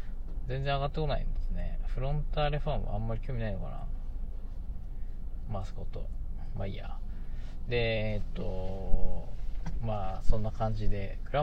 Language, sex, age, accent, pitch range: Japanese, male, 20-39, native, 95-135 Hz